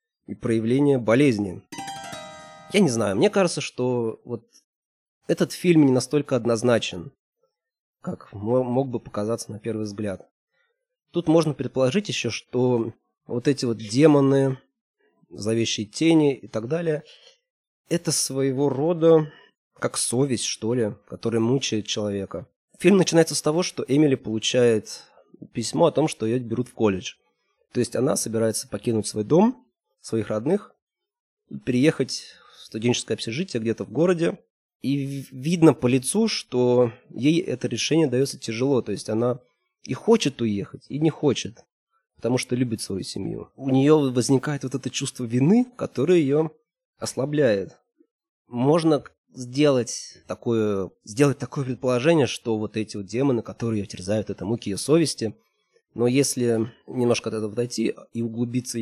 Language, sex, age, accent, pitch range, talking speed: Russian, male, 20-39, native, 115-155 Hz, 140 wpm